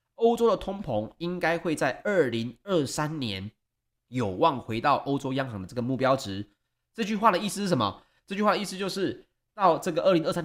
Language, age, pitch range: Chinese, 30-49, 110-165 Hz